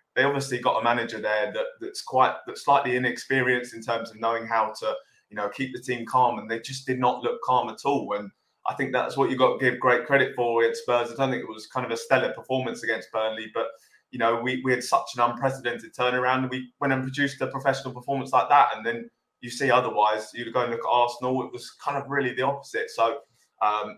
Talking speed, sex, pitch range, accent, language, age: 250 wpm, male, 115-135 Hz, British, English, 20-39